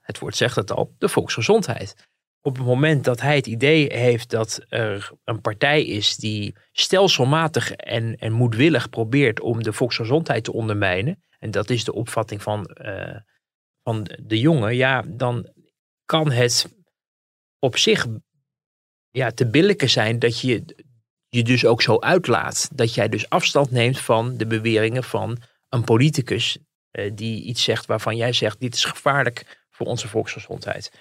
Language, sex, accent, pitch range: Dutch, male, Dutch, 110-145 Hz